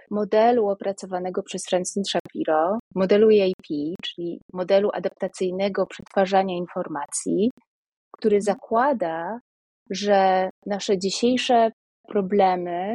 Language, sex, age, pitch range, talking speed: Polish, female, 30-49, 190-235 Hz, 85 wpm